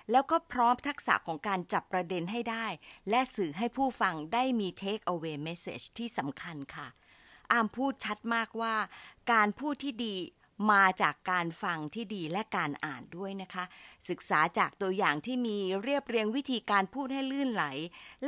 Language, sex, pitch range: Thai, female, 170-240 Hz